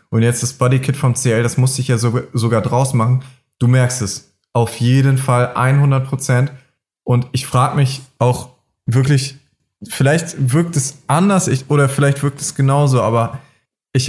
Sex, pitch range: male, 125-145 Hz